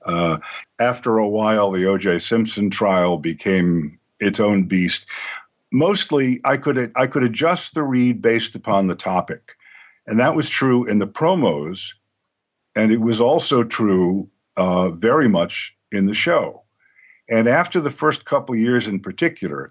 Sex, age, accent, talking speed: male, 50-69, American, 160 wpm